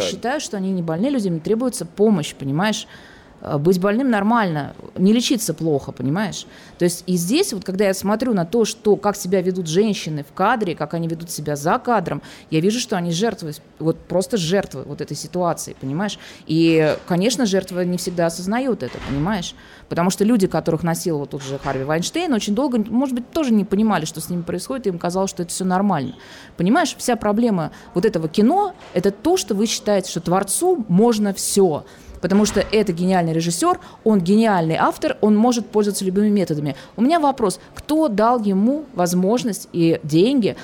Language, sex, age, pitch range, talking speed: Russian, female, 20-39, 170-225 Hz, 185 wpm